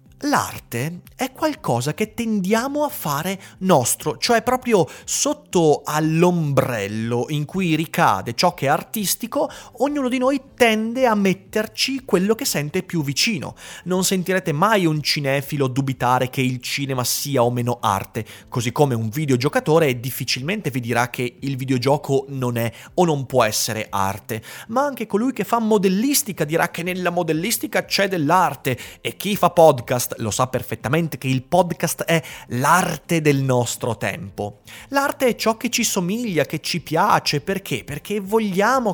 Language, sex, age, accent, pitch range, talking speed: Italian, male, 30-49, native, 130-195 Hz, 155 wpm